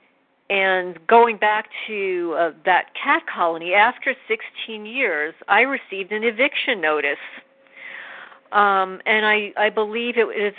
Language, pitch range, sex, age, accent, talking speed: English, 175-235 Hz, female, 50-69, American, 130 wpm